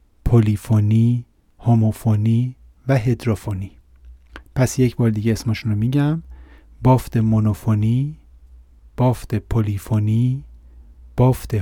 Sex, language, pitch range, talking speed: male, Persian, 110-135 Hz, 85 wpm